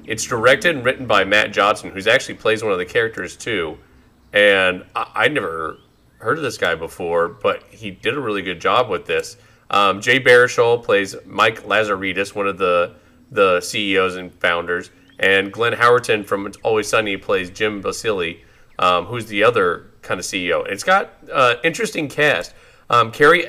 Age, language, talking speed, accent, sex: 30-49, English, 180 wpm, American, male